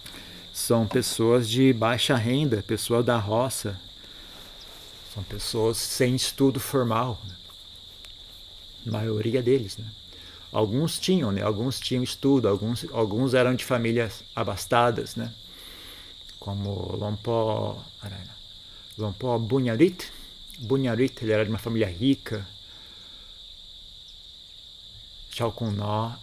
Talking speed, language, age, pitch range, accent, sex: 100 wpm, Portuguese, 50-69, 100-125 Hz, Brazilian, male